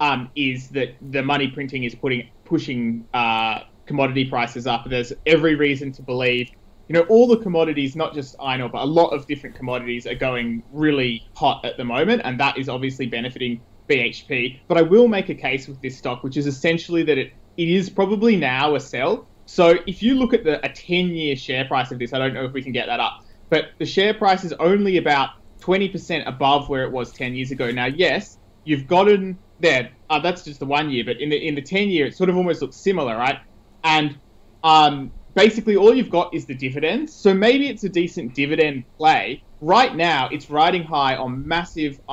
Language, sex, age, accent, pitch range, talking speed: English, male, 20-39, Australian, 130-170 Hz, 215 wpm